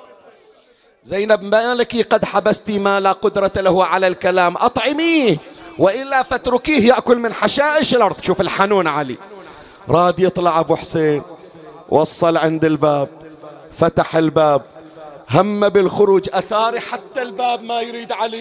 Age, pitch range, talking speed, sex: 40-59, 195-220 Hz, 120 wpm, male